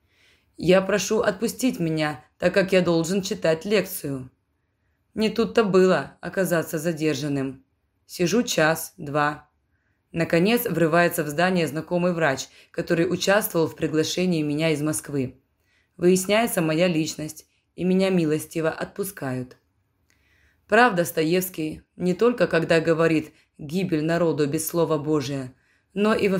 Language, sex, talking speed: Russian, female, 115 wpm